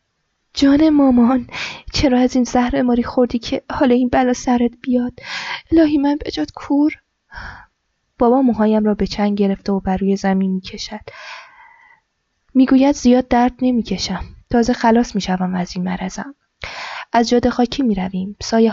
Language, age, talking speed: Persian, 10-29, 140 wpm